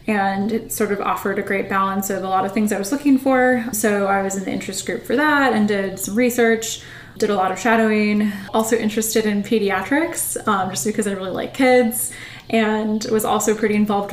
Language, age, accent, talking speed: English, 10-29, American, 215 wpm